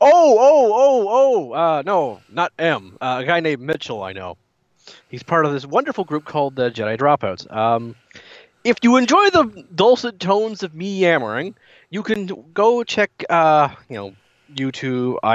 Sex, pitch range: male, 120-175 Hz